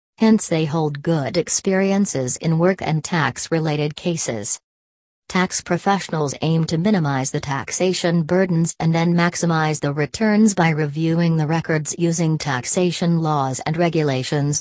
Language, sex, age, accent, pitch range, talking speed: English, female, 40-59, American, 150-175 Hz, 130 wpm